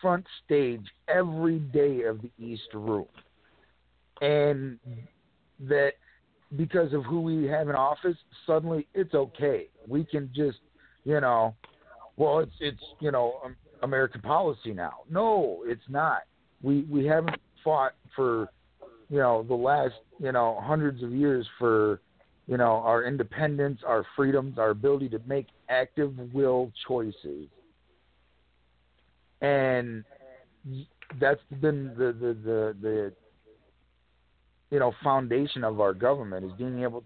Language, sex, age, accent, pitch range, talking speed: English, male, 50-69, American, 115-150 Hz, 130 wpm